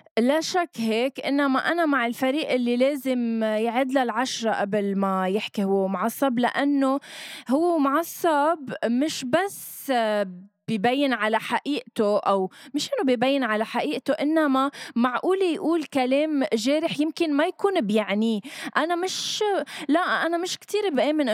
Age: 20-39